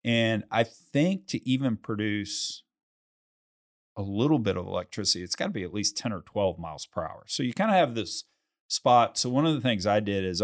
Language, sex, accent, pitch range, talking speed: English, male, American, 95-120 Hz, 220 wpm